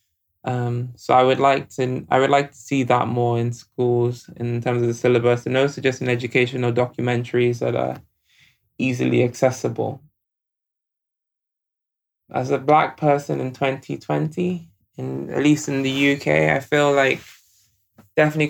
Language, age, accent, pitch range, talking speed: English, 20-39, British, 95-140 Hz, 150 wpm